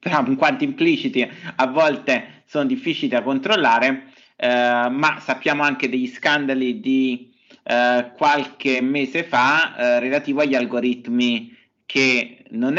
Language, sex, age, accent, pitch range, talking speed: Italian, male, 30-49, native, 120-145 Hz, 120 wpm